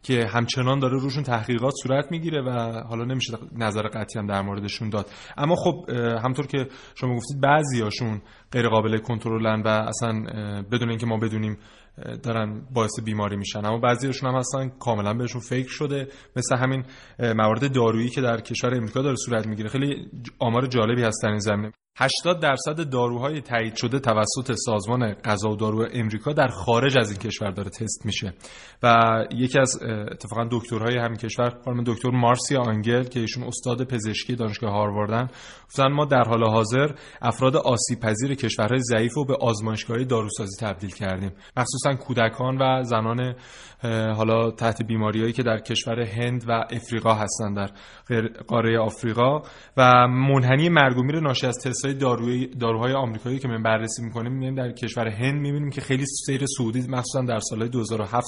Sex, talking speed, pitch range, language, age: male, 160 wpm, 110-130 Hz, Persian, 20-39